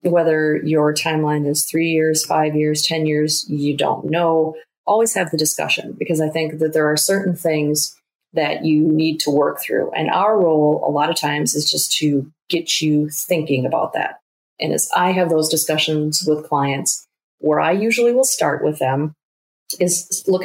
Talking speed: 185 wpm